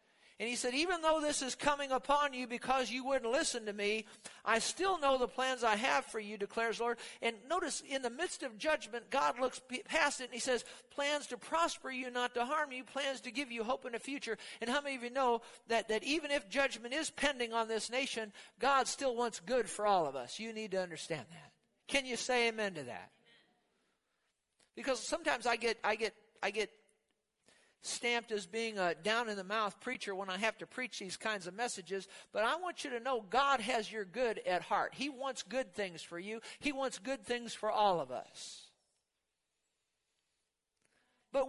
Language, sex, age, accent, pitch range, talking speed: English, male, 50-69, American, 220-275 Hz, 210 wpm